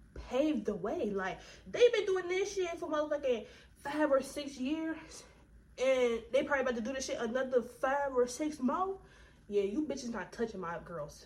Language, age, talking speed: English, 20-39, 185 wpm